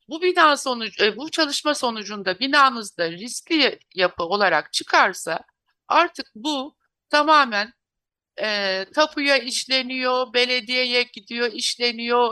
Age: 60-79